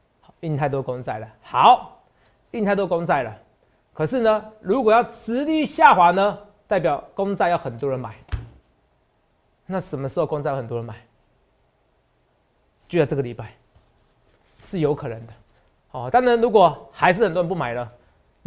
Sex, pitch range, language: male, 145-235 Hz, Chinese